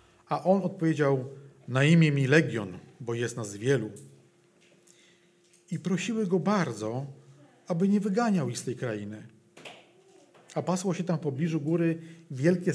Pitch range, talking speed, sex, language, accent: 135-175 Hz, 140 wpm, male, Polish, native